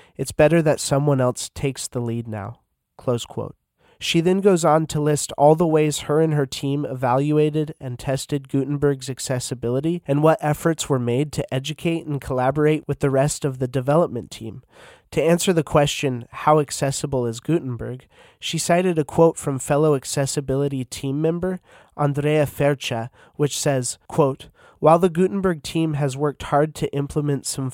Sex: male